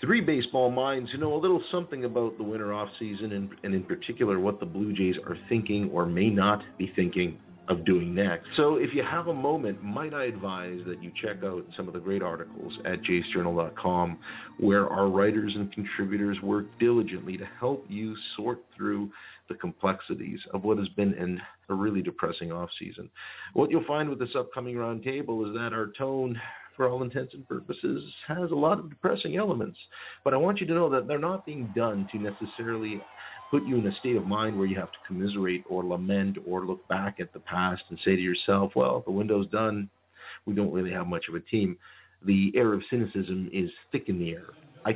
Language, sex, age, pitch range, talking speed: English, male, 50-69, 95-115 Hz, 205 wpm